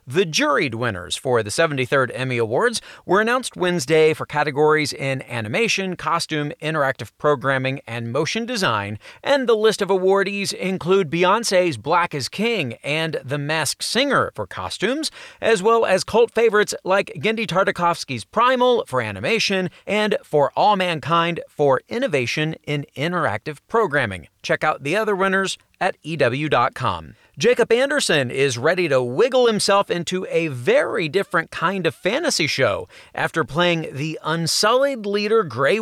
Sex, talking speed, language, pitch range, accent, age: male, 140 wpm, English, 140-200 Hz, American, 40-59